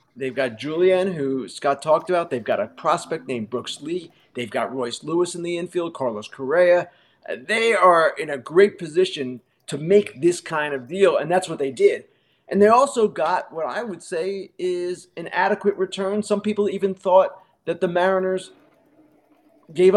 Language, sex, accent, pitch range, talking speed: English, male, American, 160-205 Hz, 180 wpm